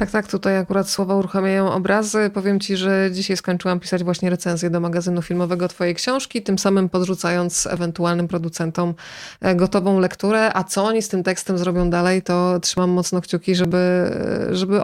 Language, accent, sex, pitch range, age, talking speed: Polish, native, female, 185-215 Hz, 20-39, 165 wpm